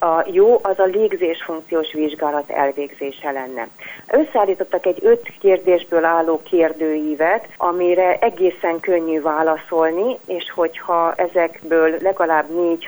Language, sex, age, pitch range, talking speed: Hungarian, female, 30-49, 155-180 Hz, 105 wpm